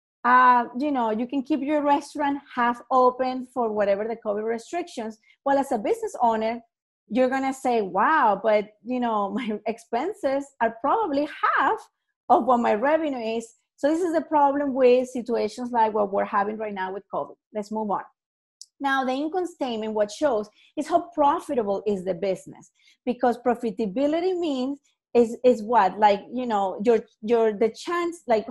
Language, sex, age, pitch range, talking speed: English, female, 30-49, 225-290 Hz, 170 wpm